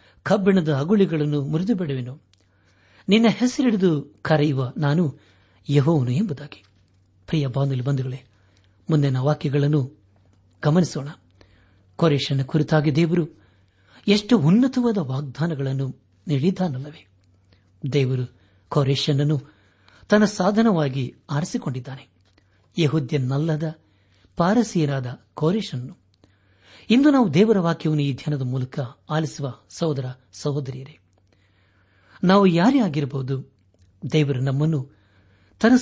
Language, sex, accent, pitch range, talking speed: Kannada, male, native, 100-160 Hz, 75 wpm